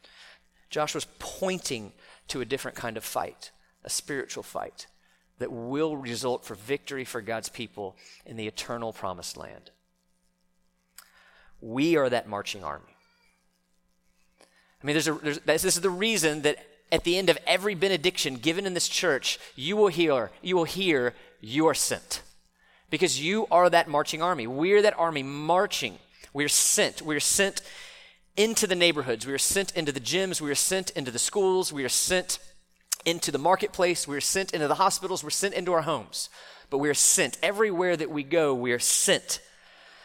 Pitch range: 125-175 Hz